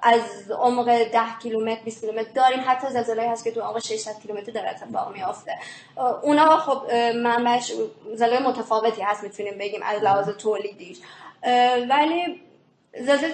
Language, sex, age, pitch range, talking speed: Persian, female, 20-39, 225-255 Hz, 150 wpm